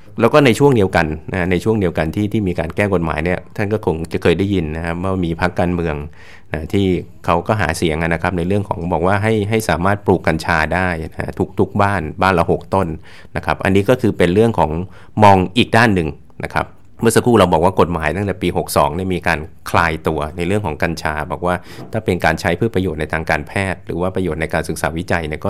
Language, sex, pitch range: English, male, 80-100 Hz